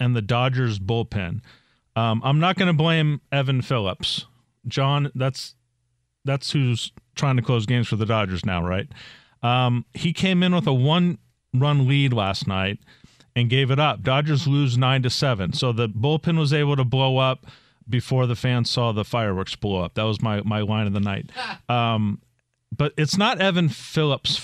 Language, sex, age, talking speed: English, male, 40-59, 180 wpm